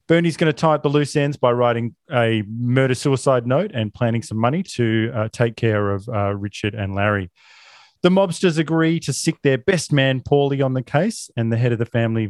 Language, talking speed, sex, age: English, 215 wpm, male, 30-49